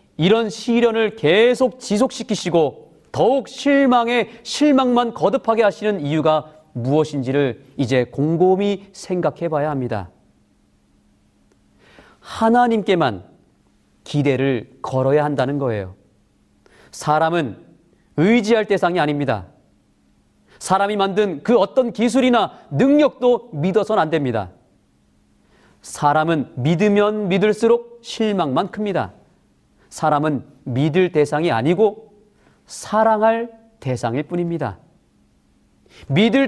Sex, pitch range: male, 145-225 Hz